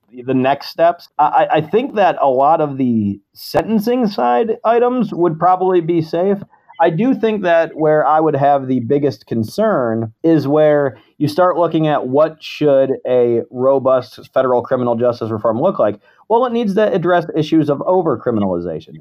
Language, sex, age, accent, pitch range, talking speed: English, male, 30-49, American, 125-170 Hz, 165 wpm